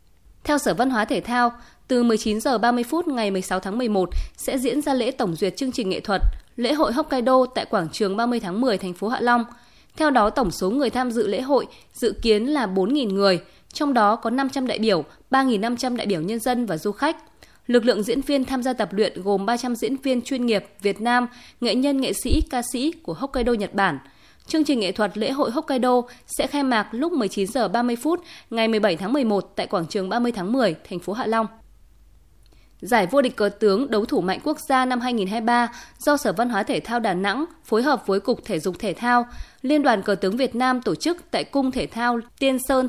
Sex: female